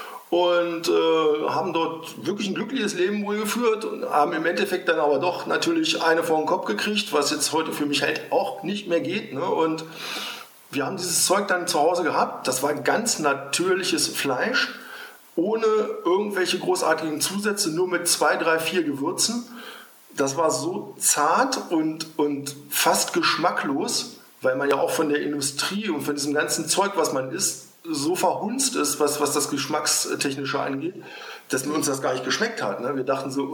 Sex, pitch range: male, 145-200 Hz